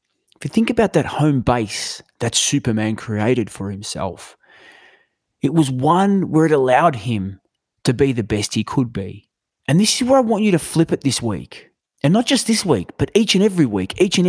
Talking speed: 210 wpm